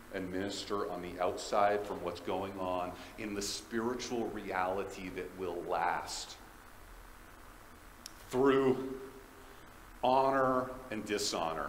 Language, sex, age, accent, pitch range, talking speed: English, male, 40-59, American, 100-140 Hz, 105 wpm